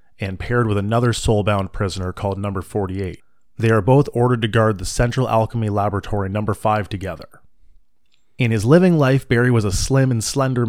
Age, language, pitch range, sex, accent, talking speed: 30-49, English, 100-120 Hz, male, American, 180 wpm